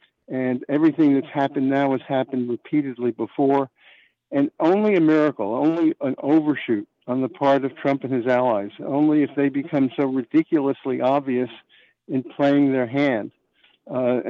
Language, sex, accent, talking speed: English, male, American, 150 wpm